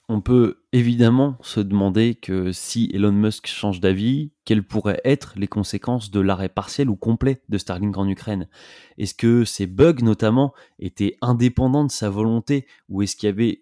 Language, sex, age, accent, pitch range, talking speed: French, male, 20-39, French, 100-125 Hz, 175 wpm